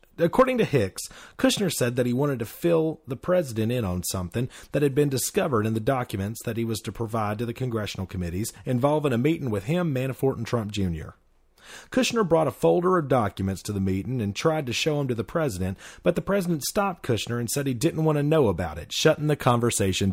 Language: English